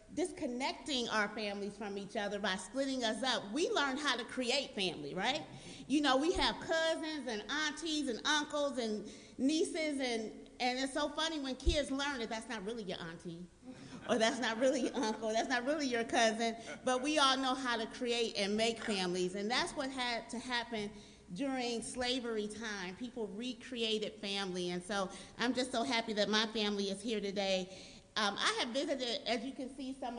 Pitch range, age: 210-265 Hz, 40-59